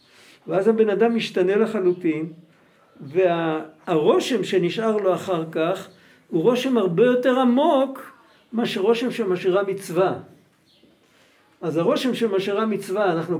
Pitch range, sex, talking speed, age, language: 175-235 Hz, male, 110 wpm, 60-79, Hebrew